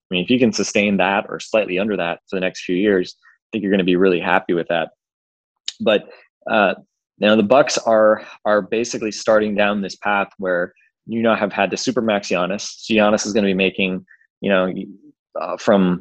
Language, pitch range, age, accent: English, 95-105 Hz, 20-39, American